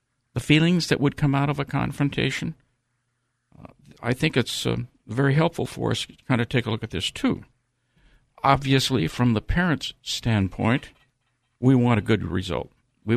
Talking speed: 175 wpm